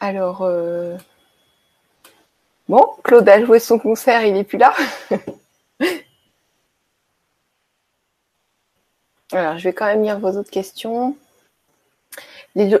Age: 30-49